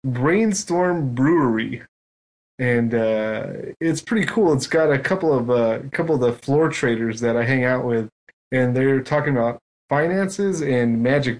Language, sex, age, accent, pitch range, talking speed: English, male, 30-49, American, 115-145 Hz, 160 wpm